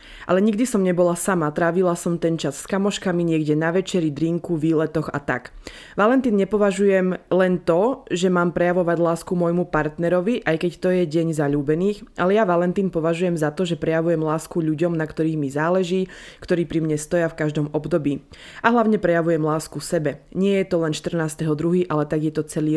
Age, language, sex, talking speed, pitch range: 20-39, Slovak, female, 185 wpm, 160-185 Hz